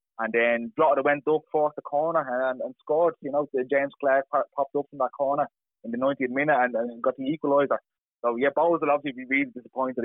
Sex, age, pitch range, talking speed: male, 20-39, 120-145 Hz, 220 wpm